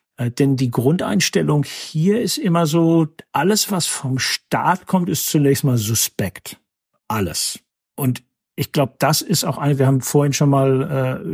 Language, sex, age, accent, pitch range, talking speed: German, male, 50-69, German, 120-140 Hz, 165 wpm